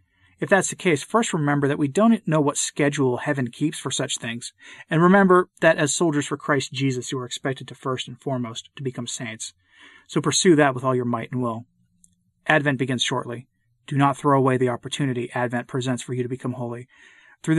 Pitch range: 125-150 Hz